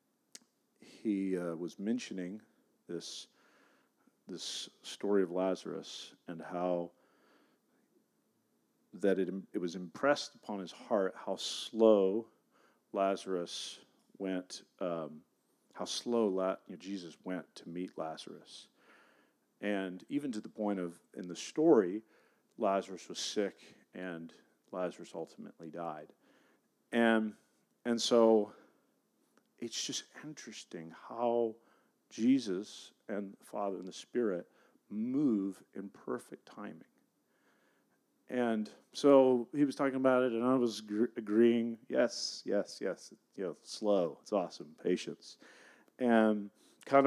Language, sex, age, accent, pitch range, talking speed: English, male, 40-59, American, 95-130 Hz, 110 wpm